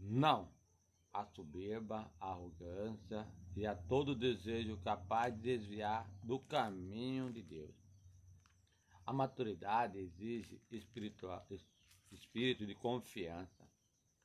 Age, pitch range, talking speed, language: 60-79, 95-115 Hz, 90 wpm, Portuguese